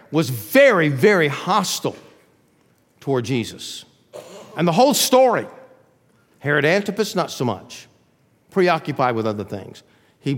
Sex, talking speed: male, 115 wpm